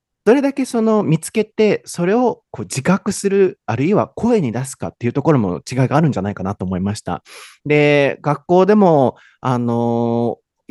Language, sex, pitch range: Japanese, male, 110-180 Hz